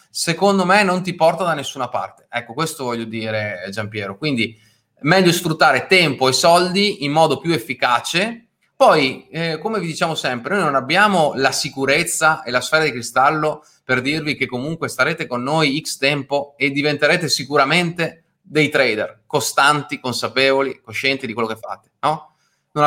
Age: 30-49